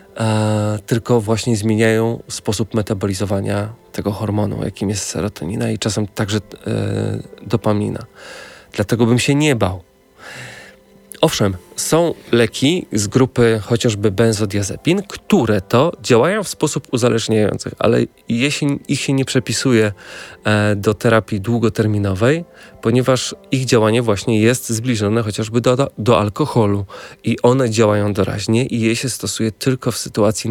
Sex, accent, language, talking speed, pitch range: male, native, Polish, 120 wpm, 105-120 Hz